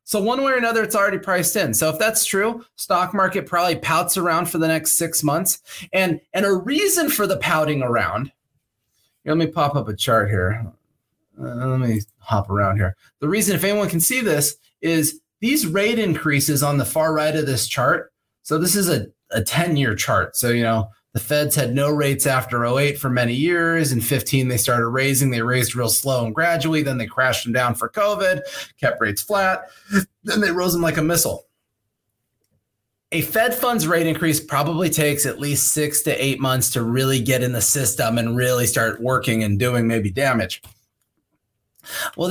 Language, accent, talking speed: English, American, 195 wpm